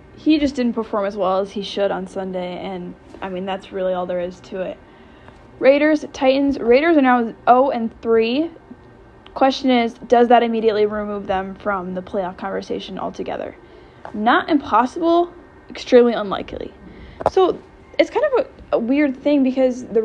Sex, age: female, 10-29